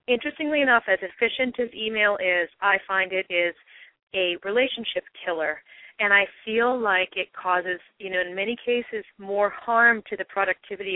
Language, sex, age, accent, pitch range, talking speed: English, female, 30-49, American, 180-225 Hz, 165 wpm